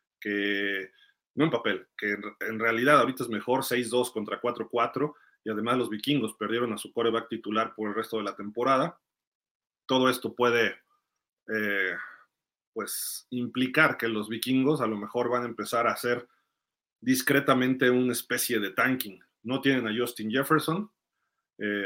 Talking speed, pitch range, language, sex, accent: 155 wpm, 110-130 Hz, Spanish, male, Mexican